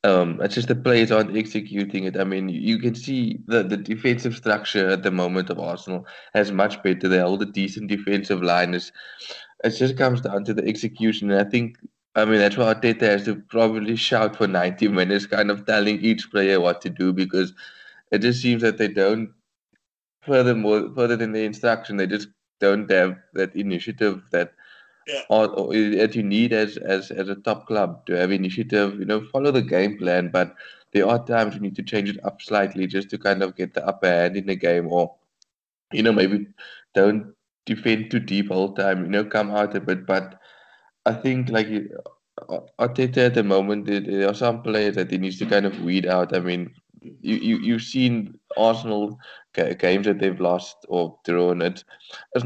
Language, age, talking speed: English, 20-39, 200 wpm